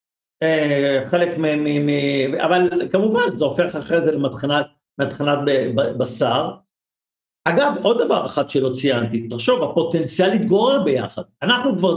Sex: male